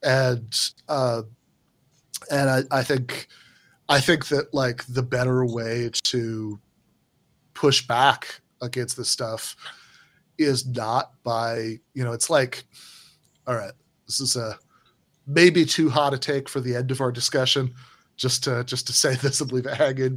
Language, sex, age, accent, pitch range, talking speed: English, male, 30-49, American, 115-135 Hz, 155 wpm